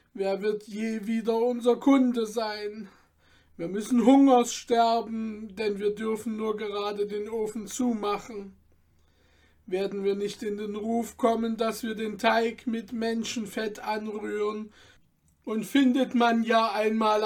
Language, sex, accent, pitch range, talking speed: German, male, German, 175-220 Hz, 130 wpm